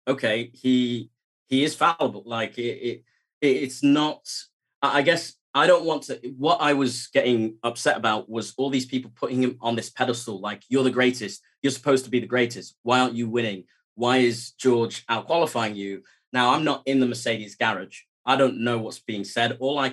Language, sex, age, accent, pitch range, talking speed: English, male, 30-49, British, 110-130 Hz, 195 wpm